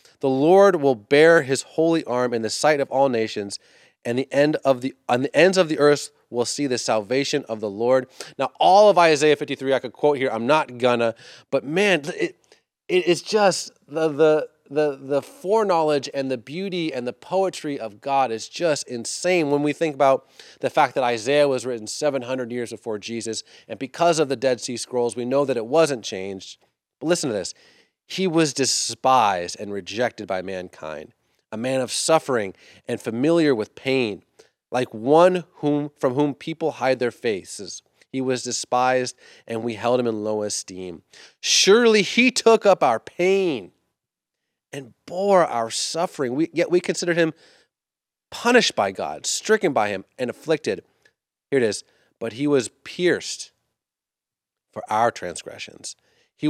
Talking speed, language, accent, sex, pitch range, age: 175 wpm, English, American, male, 120-165 Hz, 30-49